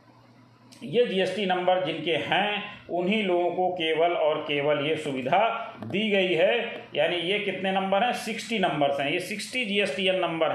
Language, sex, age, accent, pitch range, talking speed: Hindi, male, 40-59, native, 160-215 Hz, 160 wpm